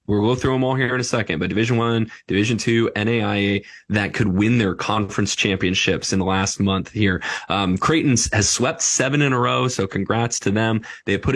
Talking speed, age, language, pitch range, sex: 215 wpm, 20-39, English, 100-120 Hz, male